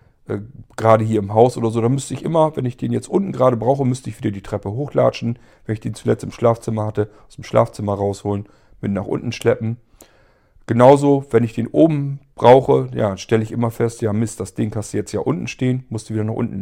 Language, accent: German, German